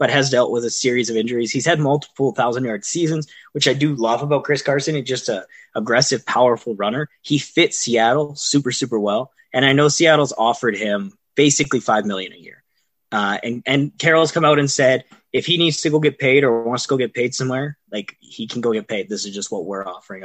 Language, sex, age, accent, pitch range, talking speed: English, male, 20-39, American, 115-150 Hz, 230 wpm